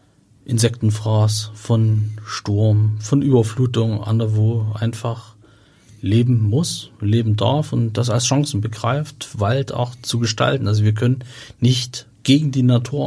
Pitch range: 105-120 Hz